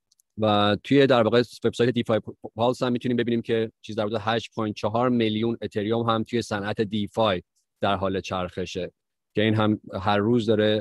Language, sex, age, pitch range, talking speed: Persian, male, 30-49, 100-115 Hz, 165 wpm